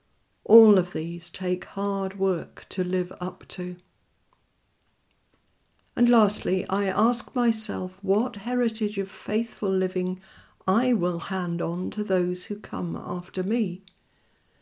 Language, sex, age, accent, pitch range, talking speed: English, female, 50-69, British, 185-215 Hz, 125 wpm